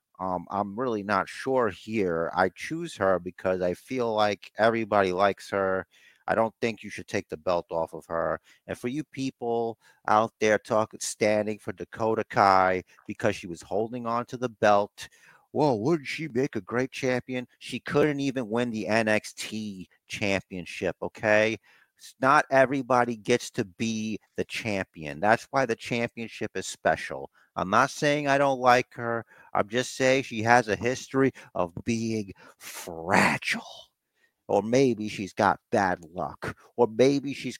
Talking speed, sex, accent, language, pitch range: 160 wpm, male, American, English, 95-120 Hz